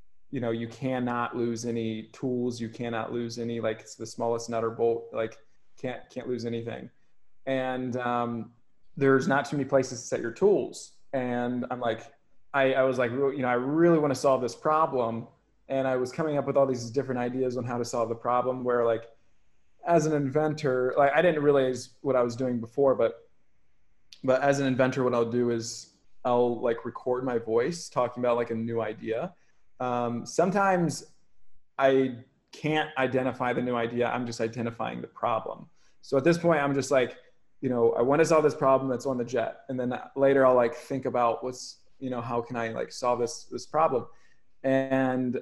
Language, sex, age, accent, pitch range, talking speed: English, male, 20-39, American, 120-135 Hz, 200 wpm